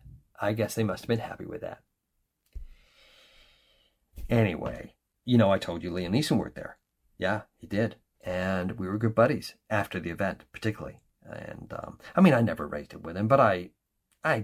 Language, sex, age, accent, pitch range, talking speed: English, male, 40-59, American, 90-115 Hz, 185 wpm